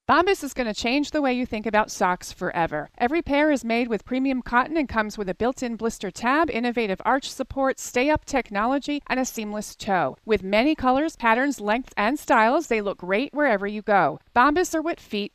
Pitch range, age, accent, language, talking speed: 205-265 Hz, 40-59, American, English, 205 wpm